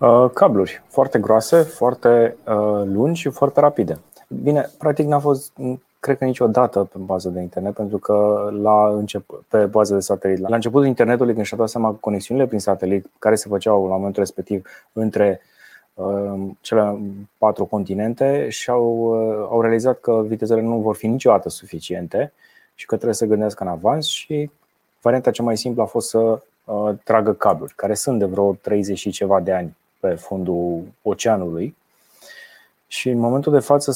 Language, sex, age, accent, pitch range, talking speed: Romanian, male, 20-39, native, 100-120 Hz, 160 wpm